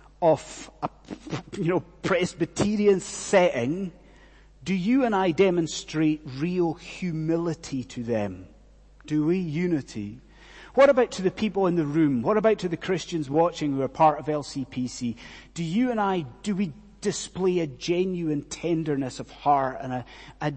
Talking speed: 150 wpm